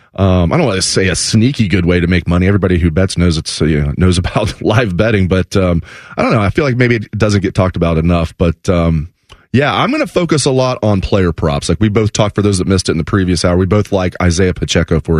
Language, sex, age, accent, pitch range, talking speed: English, male, 30-49, American, 90-120 Hz, 275 wpm